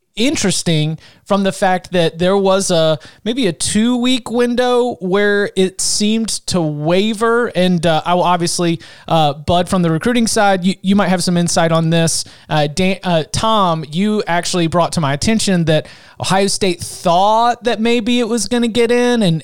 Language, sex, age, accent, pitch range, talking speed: English, male, 30-49, American, 160-195 Hz, 180 wpm